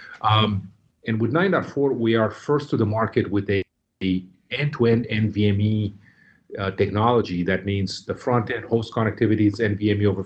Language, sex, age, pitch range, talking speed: English, male, 40-59, 100-115 Hz, 150 wpm